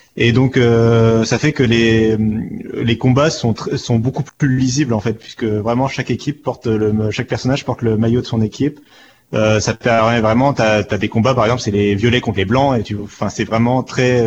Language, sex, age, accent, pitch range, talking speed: French, male, 30-49, French, 110-125 Hz, 225 wpm